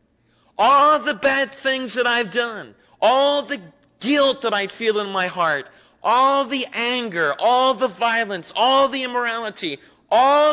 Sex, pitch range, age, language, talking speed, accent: male, 205-270 Hz, 40-59, English, 150 wpm, American